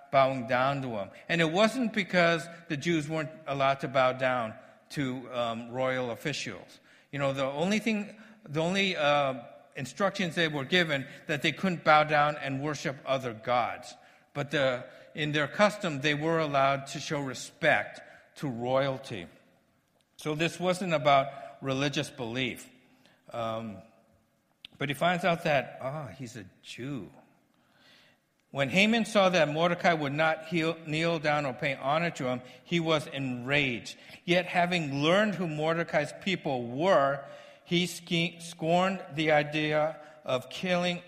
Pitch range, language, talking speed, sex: 130-170 Hz, English, 145 wpm, male